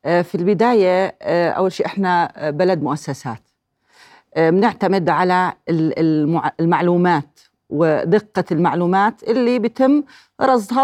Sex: female